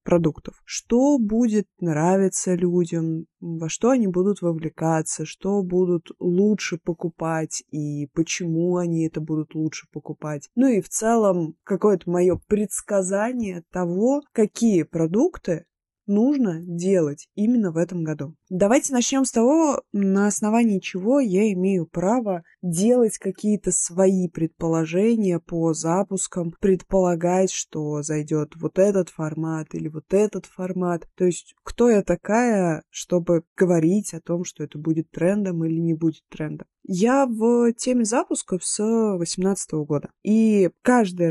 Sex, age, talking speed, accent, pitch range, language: female, 20-39, 130 wpm, native, 165-210 Hz, Russian